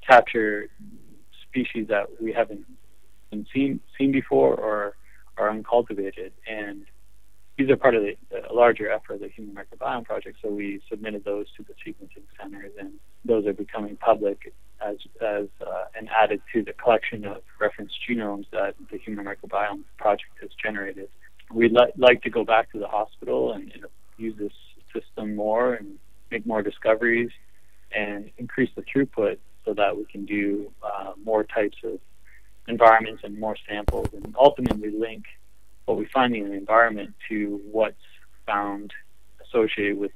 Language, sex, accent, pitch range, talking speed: English, male, American, 100-115 Hz, 160 wpm